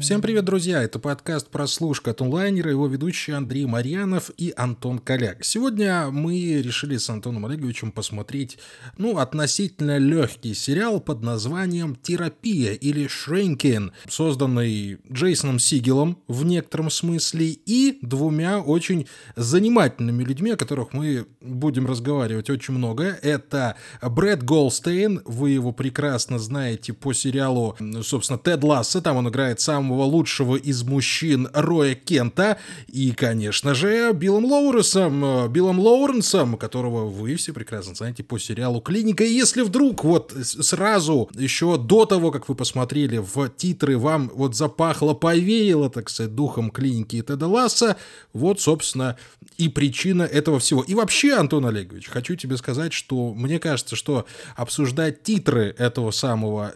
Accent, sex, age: native, male, 20-39